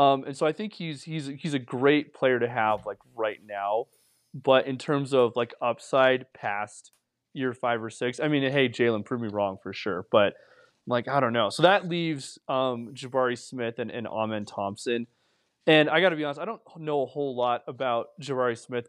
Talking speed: 210 wpm